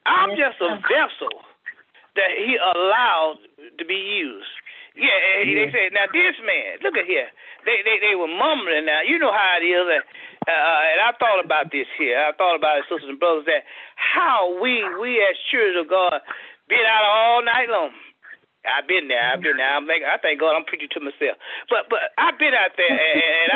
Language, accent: English, American